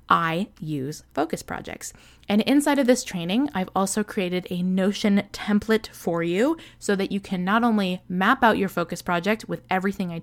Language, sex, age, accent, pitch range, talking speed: English, female, 20-39, American, 175-230 Hz, 180 wpm